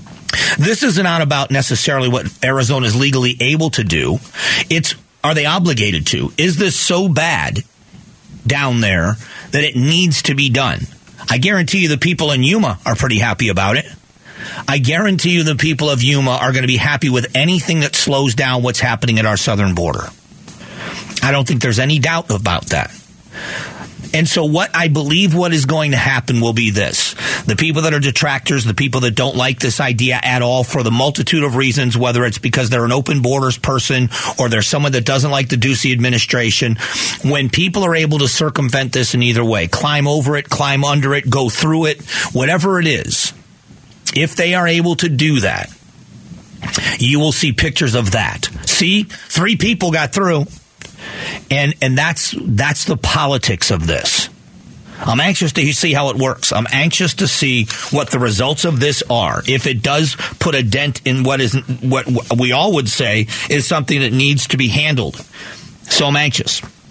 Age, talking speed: 40-59, 190 wpm